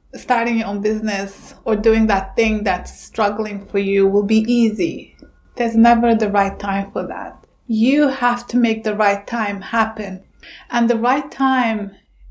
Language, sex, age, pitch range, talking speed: English, female, 30-49, 210-240 Hz, 165 wpm